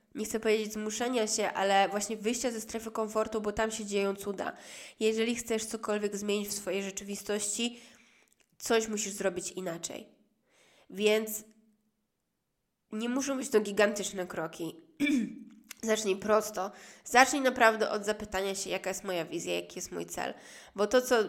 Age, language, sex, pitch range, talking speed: 20-39, Polish, female, 195-225 Hz, 150 wpm